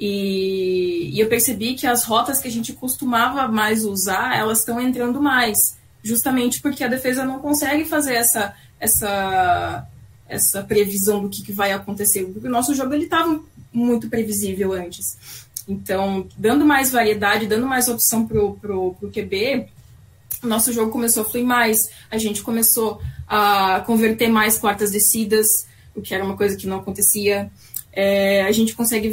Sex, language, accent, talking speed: female, Portuguese, Brazilian, 165 wpm